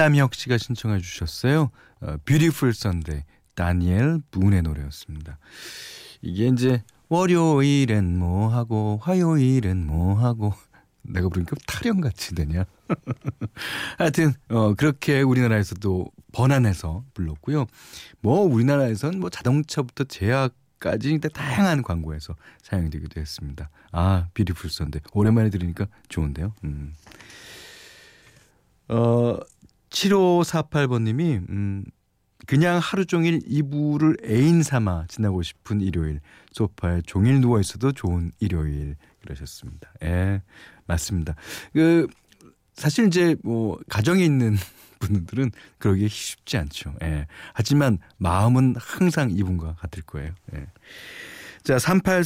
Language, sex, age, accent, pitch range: Korean, male, 40-59, native, 90-140 Hz